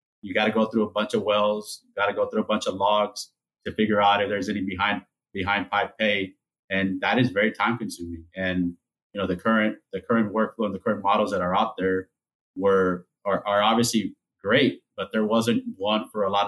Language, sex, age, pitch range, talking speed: English, male, 30-49, 95-110 Hz, 220 wpm